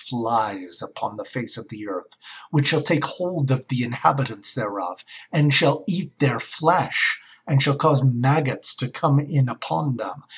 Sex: male